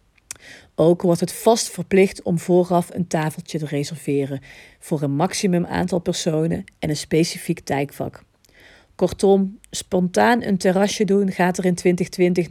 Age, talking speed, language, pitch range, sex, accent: 40-59, 140 wpm, Dutch, 160-205 Hz, female, Dutch